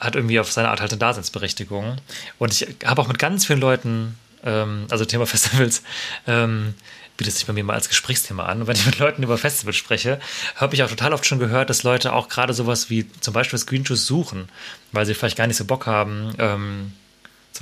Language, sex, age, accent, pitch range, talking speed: German, male, 30-49, German, 105-125 Hz, 220 wpm